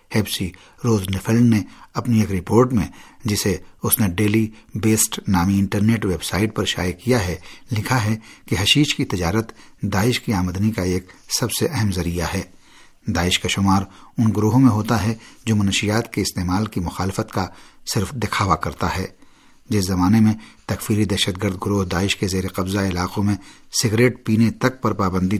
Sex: male